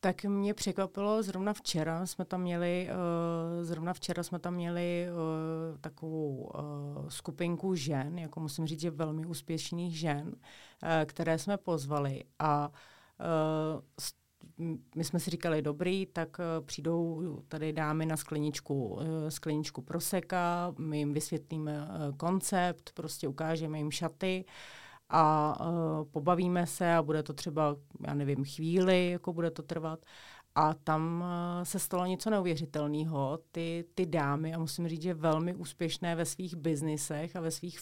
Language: Czech